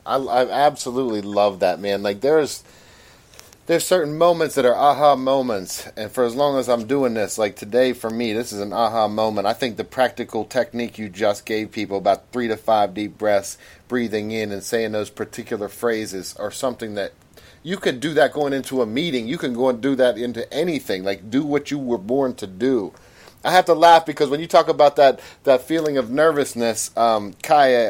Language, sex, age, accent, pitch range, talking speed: English, male, 30-49, American, 110-150 Hz, 210 wpm